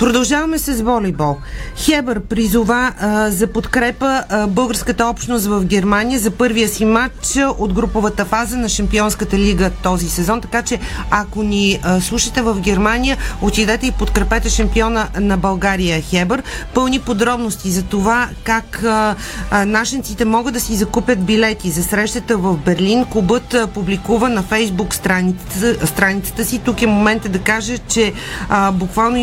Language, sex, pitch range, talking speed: Bulgarian, female, 195-235 Hz, 145 wpm